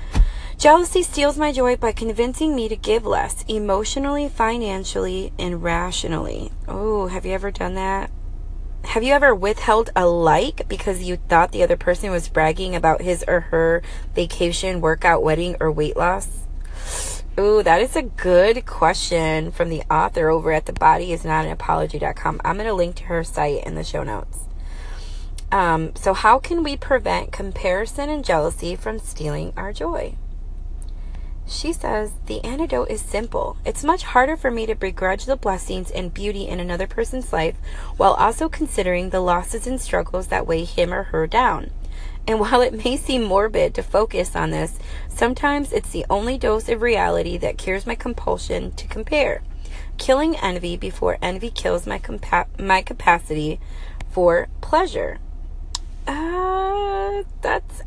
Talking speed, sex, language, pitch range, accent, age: 155 wpm, female, English, 165-255 Hz, American, 20-39